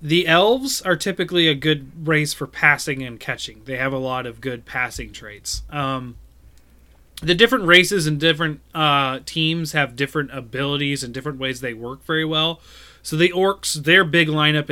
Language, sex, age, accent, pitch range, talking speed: English, male, 20-39, American, 120-150 Hz, 175 wpm